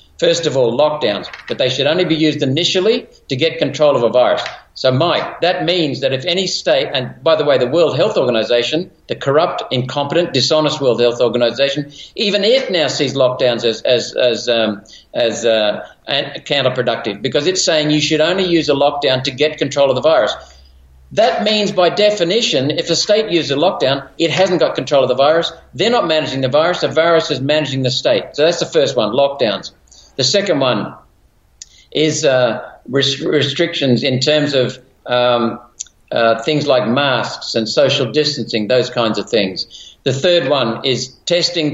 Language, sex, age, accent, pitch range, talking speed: English, male, 50-69, Australian, 130-170 Hz, 185 wpm